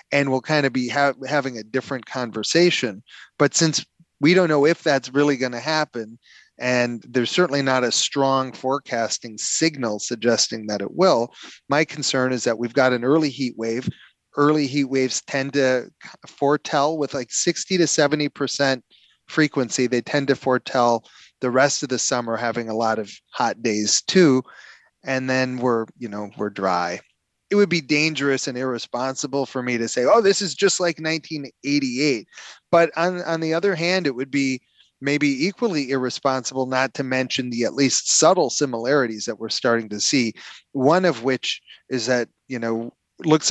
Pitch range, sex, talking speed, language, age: 120-145 Hz, male, 175 wpm, English, 30-49